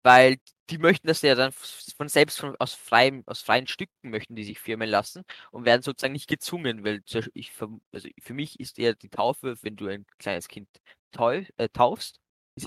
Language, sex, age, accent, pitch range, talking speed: German, male, 20-39, German, 110-145 Hz, 195 wpm